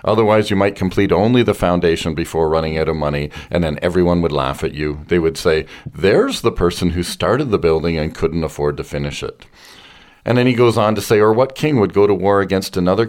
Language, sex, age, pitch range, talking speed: English, male, 40-59, 80-110 Hz, 235 wpm